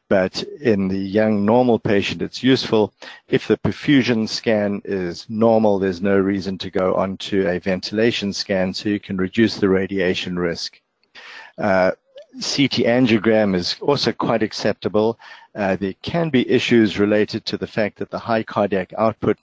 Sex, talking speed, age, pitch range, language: male, 160 wpm, 50-69, 95-115 Hz, English